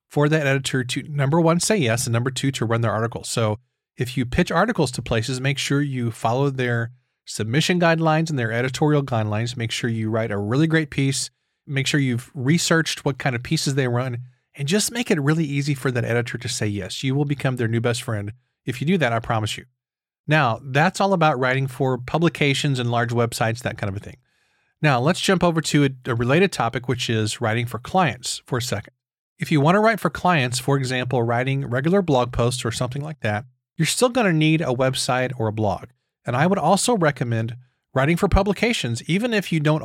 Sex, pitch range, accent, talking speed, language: male, 120-155 Hz, American, 220 wpm, English